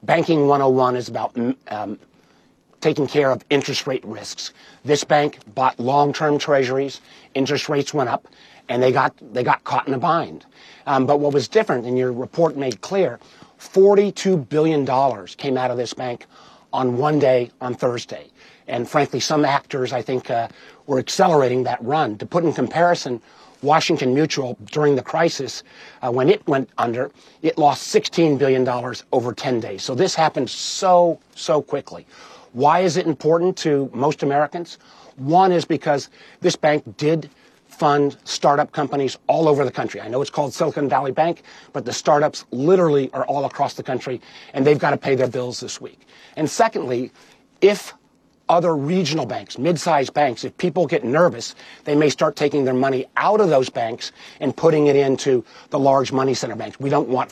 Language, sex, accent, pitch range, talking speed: English, male, American, 130-155 Hz, 175 wpm